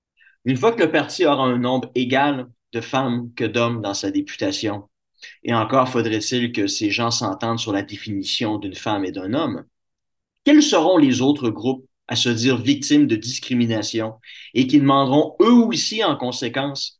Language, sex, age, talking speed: French, male, 30-49, 175 wpm